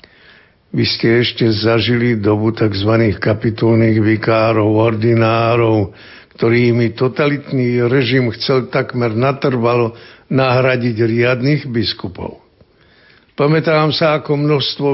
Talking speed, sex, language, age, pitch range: 90 wpm, male, Slovak, 60-79, 110-135 Hz